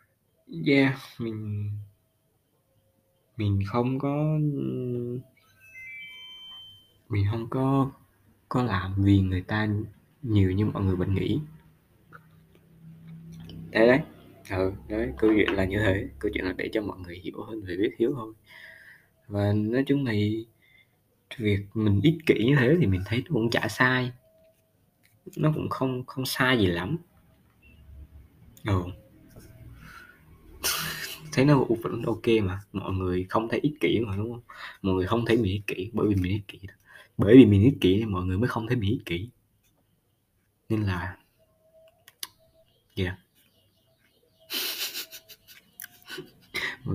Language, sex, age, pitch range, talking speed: Vietnamese, male, 20-39, 95-125 Hz, 135 wpm